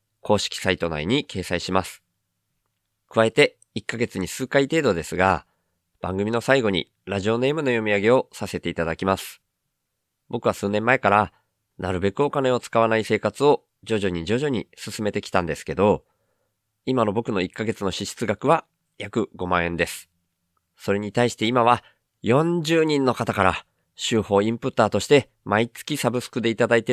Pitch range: 100-130 Hz